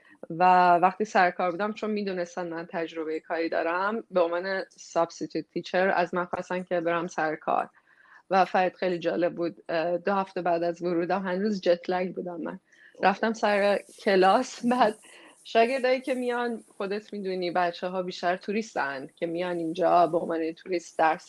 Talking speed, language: 160 wpm, Persian